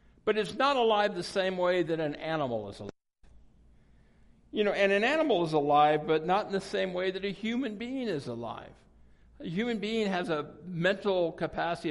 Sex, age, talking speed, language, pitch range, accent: male, 60-79, 190 wpm, English, 165-220 Hz, American